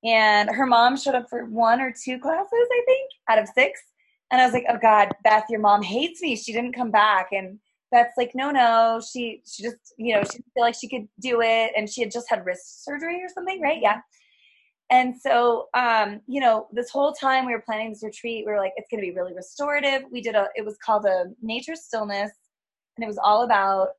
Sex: female